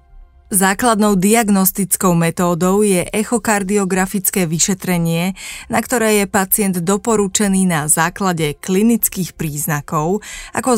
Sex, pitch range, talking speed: female, 170-210 Hz, 90 wpm